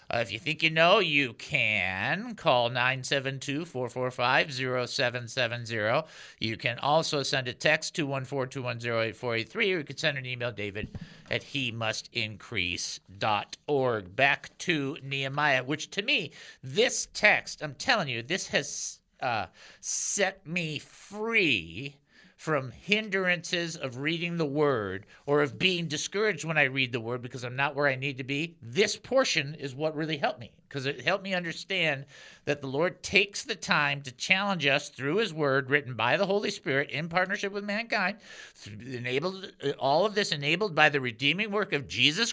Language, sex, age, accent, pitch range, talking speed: English, male, 50-69, American, 130-175 Hz, 160 wpm